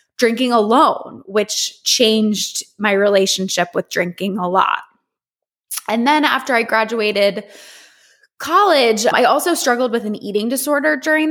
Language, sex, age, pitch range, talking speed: English, female, 20-39, 205-270 Hz, 125 wpm